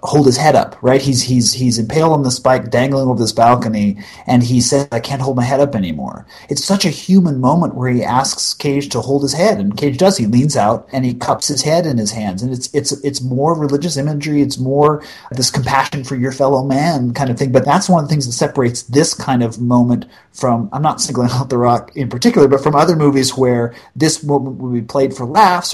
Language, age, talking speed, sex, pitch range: English, 30-49, 240 wpm, male, 125-150 Hz